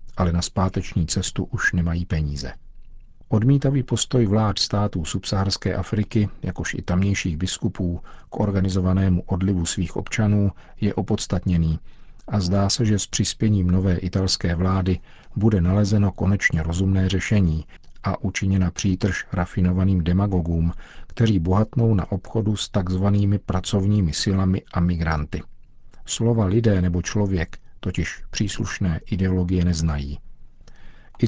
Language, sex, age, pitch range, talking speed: Czech, male, 50-69, 90-105 Hz, 120 wpm